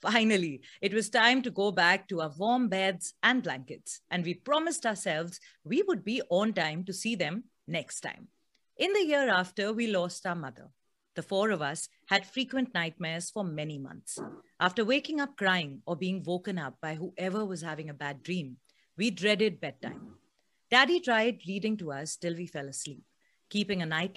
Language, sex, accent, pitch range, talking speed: Hindi, female, native, 165-230 Hz, 185 wpm